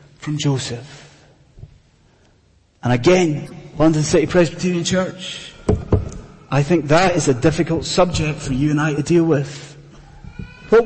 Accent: British